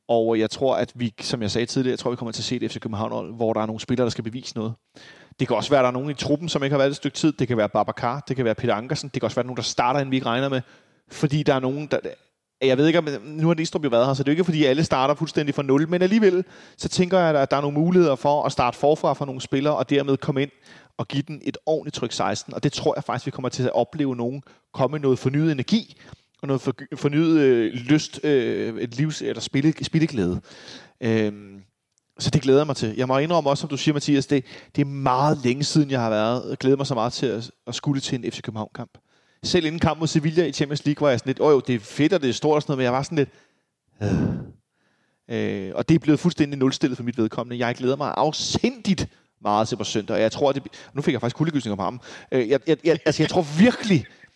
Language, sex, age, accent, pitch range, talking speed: Danish, male, 30-49, native, 120-150 Hz, 275 wpm